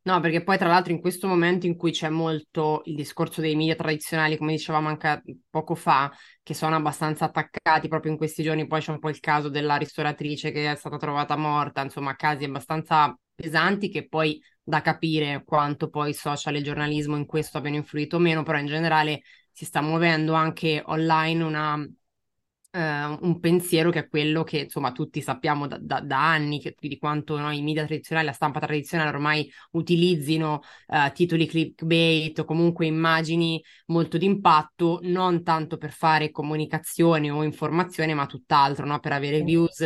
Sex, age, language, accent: female, 20-39, Italian, native